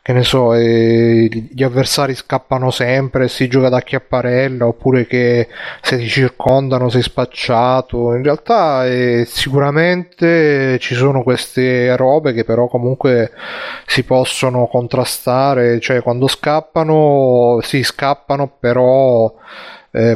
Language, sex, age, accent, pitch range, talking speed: Italian, male, 30-49, native, 120-140 Hz, 125 wpm